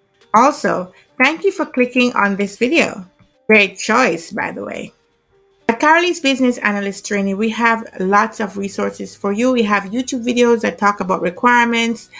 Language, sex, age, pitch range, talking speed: English, female, 50-69, 195-245 Hz, 160 wpm